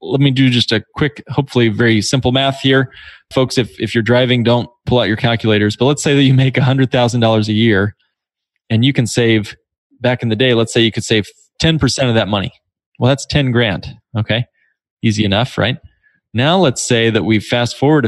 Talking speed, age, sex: 205 wpm, 20-39, male